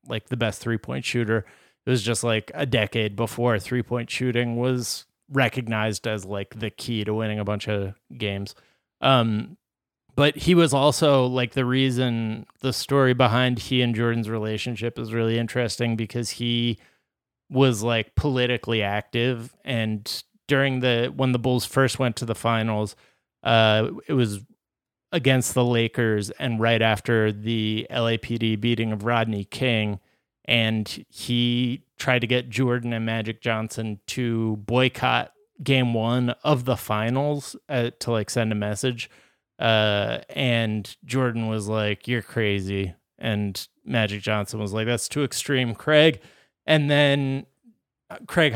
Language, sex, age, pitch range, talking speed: English, male, 30-49, 110-130 Hz, 145 wpm